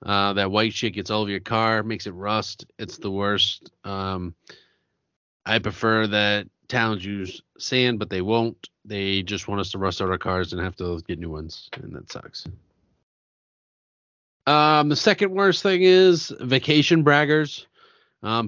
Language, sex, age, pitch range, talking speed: English, male, 30-49, 95-125 Hz, 170 wpm